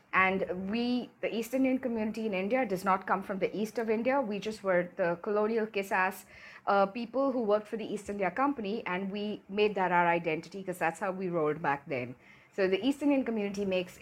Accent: Indian